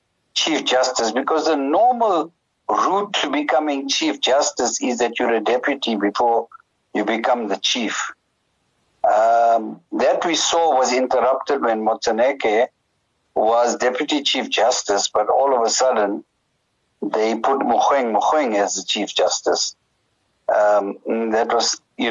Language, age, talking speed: English, 60-79, 130 wpm